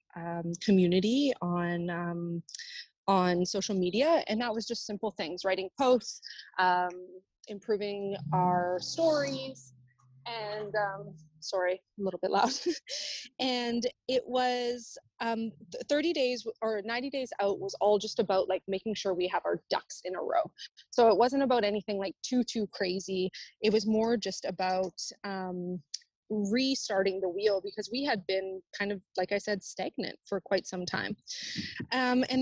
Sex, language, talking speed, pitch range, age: female, English, 155 wpm, 180-230 Hz, 20-39